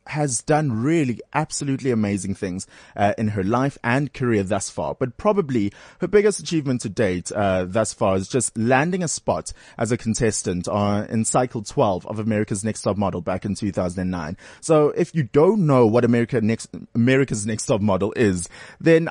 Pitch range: 100-135 Hz